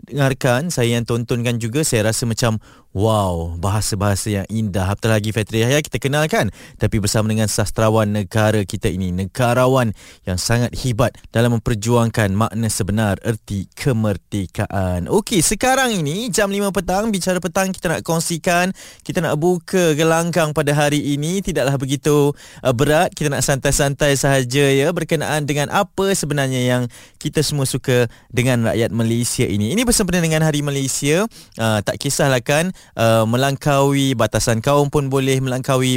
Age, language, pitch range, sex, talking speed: 20-39, Malay, 110-150 Hz, male, 150 wpm